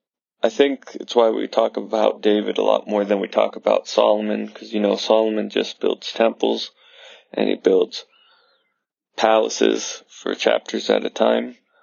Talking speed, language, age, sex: 160 wpm, English, 20-39, male